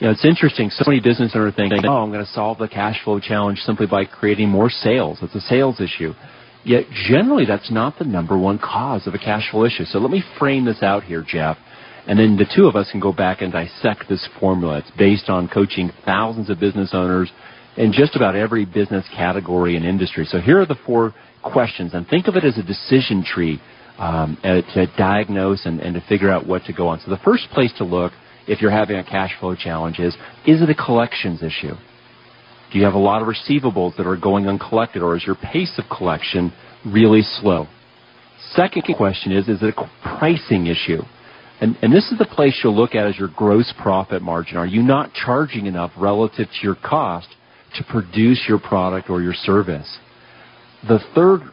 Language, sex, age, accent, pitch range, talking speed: English, male, 40-59, American, 95-120 Hz, 210 wpm